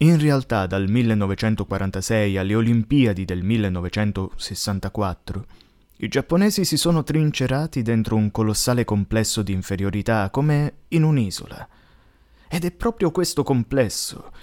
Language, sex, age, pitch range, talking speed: Italian, male, 20-39, 100-145 Hz, 110 wpm